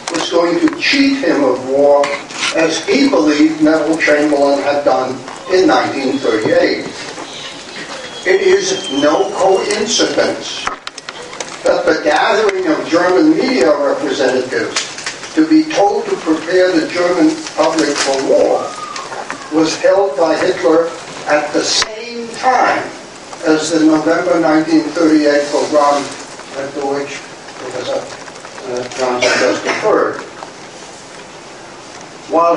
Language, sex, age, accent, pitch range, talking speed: English, male, 60-79, American, 150-220 Hz, 105 wpm